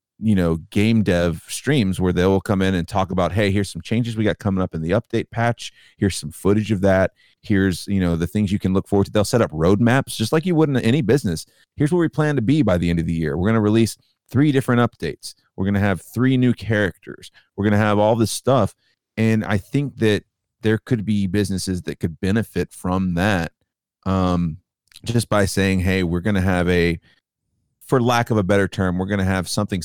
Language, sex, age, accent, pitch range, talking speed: English, male, 30-49, American, 90-115 Hz, 235 wpm